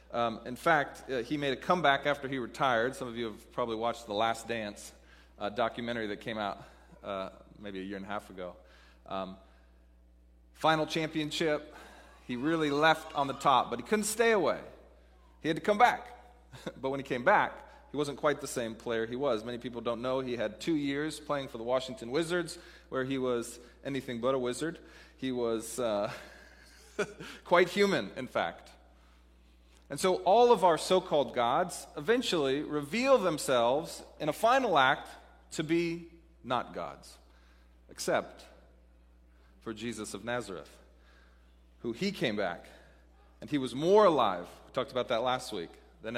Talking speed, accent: 170 wpm, American